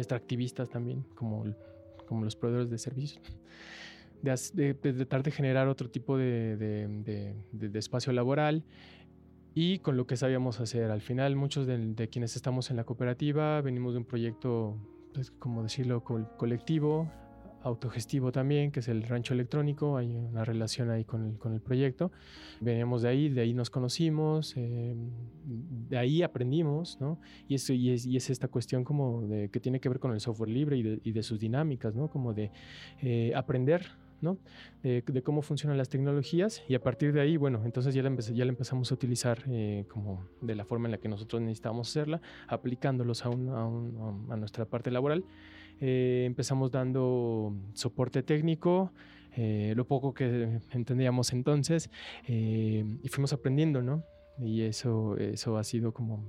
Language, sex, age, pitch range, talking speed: Spanish, male, 20-39, 115-140 Hz, 175 wpm